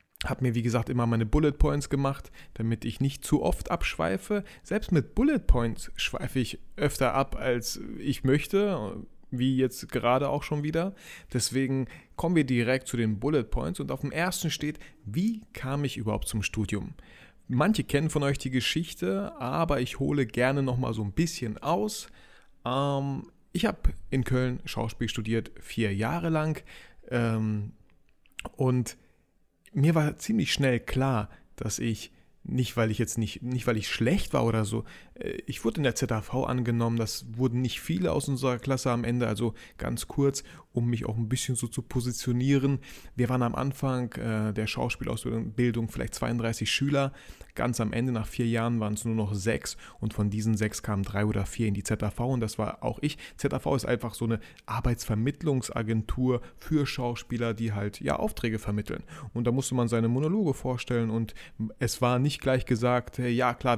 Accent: German